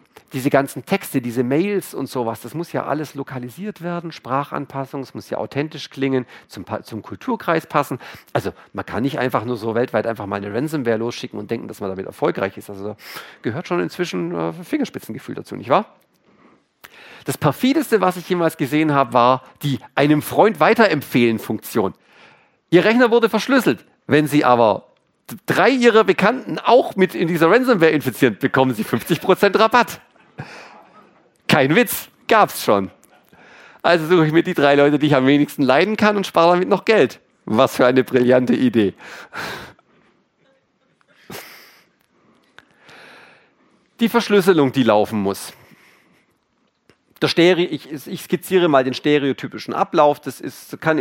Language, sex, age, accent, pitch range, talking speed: German, male, 50-69, German, 125-175 Hz, 145 wpm